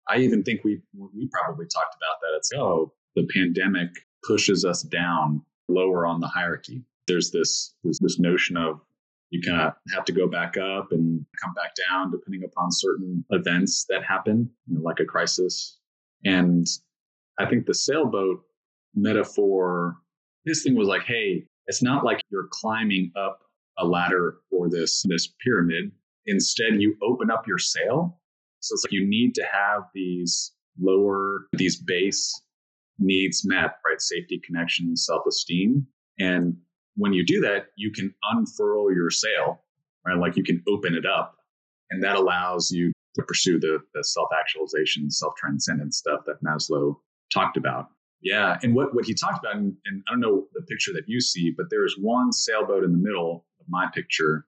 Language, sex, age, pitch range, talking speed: English, male, 30-49, 85-110 Hz, 170 wpm